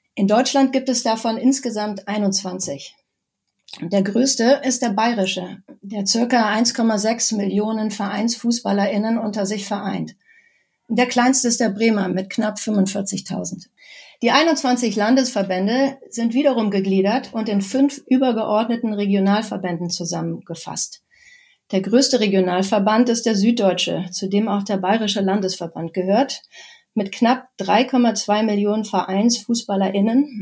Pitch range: 195-240 Hz